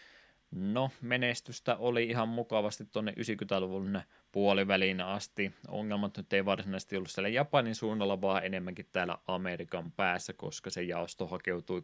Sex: male